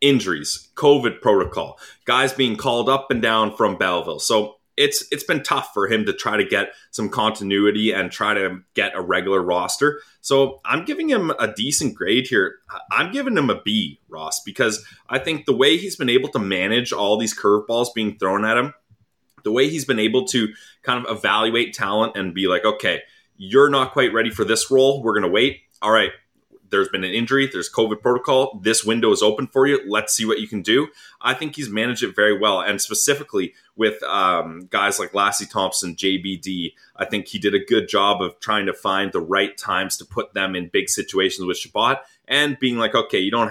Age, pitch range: 30-49, 105-135 Hz